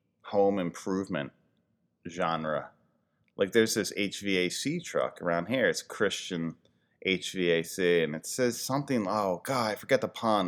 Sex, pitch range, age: male, 90-130 Hz, 30-49